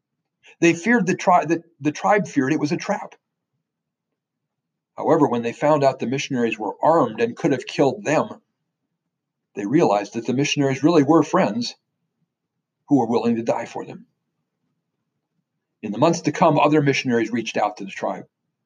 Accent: American